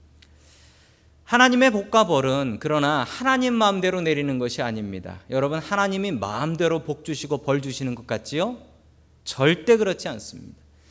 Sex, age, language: male, 40-59, Korean